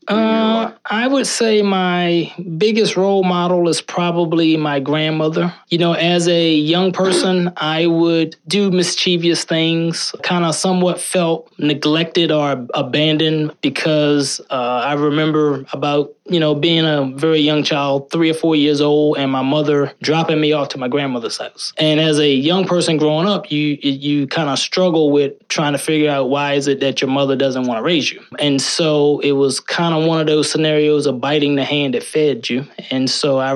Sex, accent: male, American